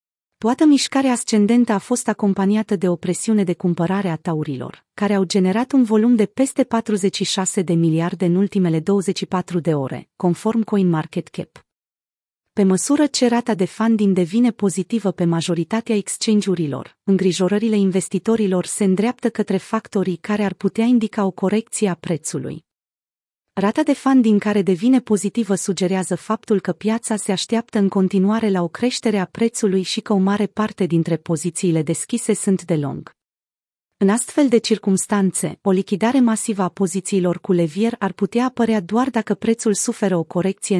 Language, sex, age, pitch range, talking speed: Romanian, female, 30-49, 180-225 Hz, 155 wpm